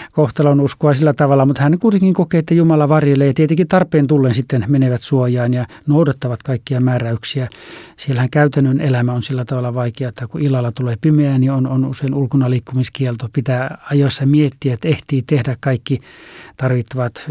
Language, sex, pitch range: Finnish, male, 125-150 Hz